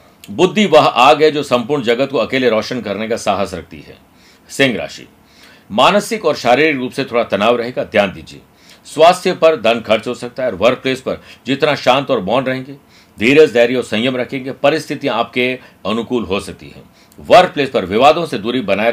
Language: Hindi